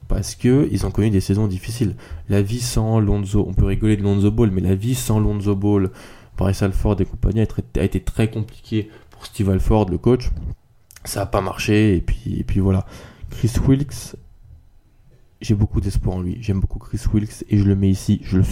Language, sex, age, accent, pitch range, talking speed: French, male, 20-39, French, 95-110 Hz, 200 wpm